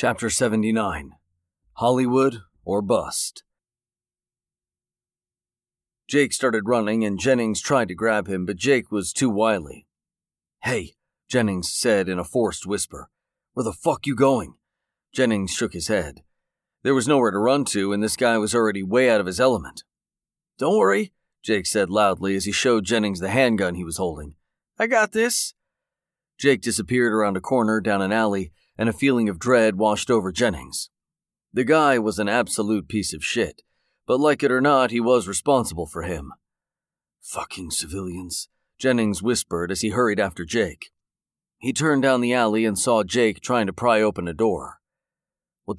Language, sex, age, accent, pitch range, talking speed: English, male, 40-59, American, 95-130 Hz, 165 wpm